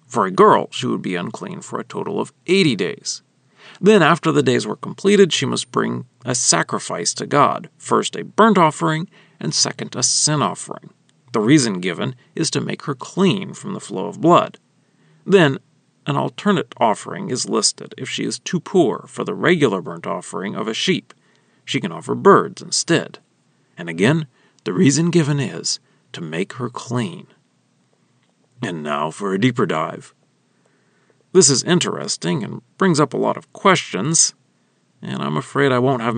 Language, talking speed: English, 170 wpm